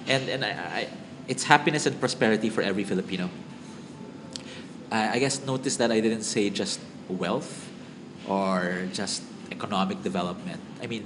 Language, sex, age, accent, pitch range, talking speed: English, male, 20-39, Filipino, 100-125 Hz, 145 wpm